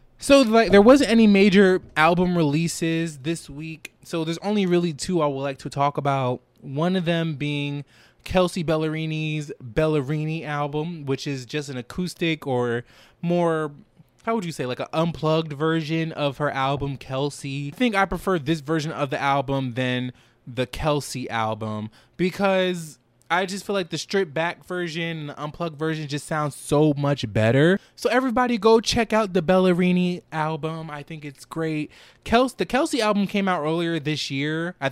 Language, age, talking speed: English, 20-39, 175 wpm